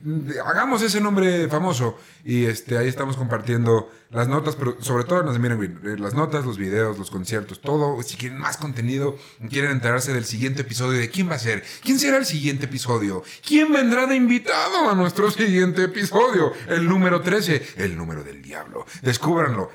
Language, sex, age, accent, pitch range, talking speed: Spanish, male, 40-59, Mexican, 110-150 Hz, 175 wpm